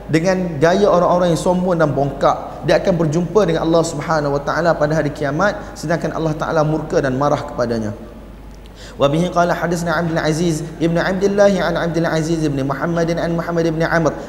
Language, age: Malay, 30-49